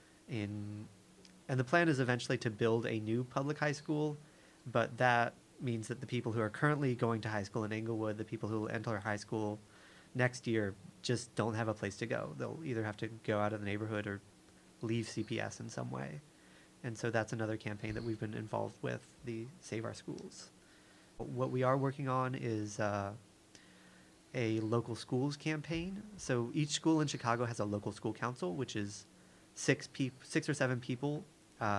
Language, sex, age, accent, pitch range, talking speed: English, male, 30-49, American, 110-130 Hz, 195 wpm